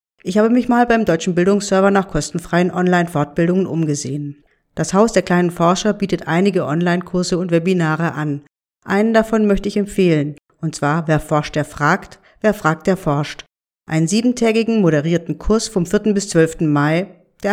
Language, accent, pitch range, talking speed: German, German, 160-210 Hz, 160 wpm